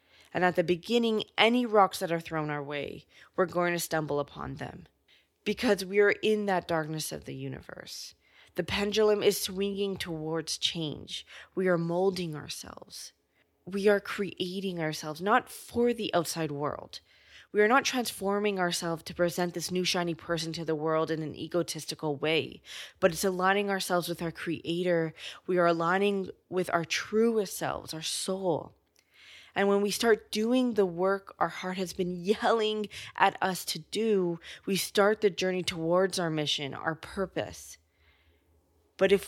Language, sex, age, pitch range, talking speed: English, female, 20-39, 160-195 Hz, 160 wpm